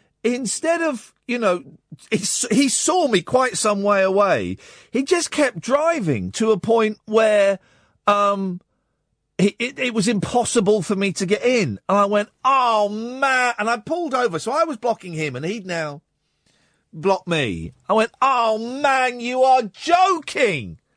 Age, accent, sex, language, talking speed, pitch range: 40-59, British, male, English, 160 wpm, 175-285 Hz